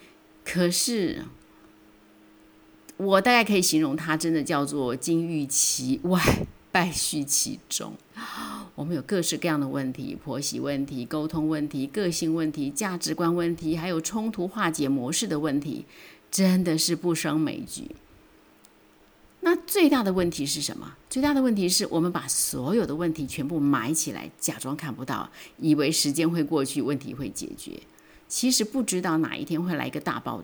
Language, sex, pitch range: Chinese, female, 145-190 Hz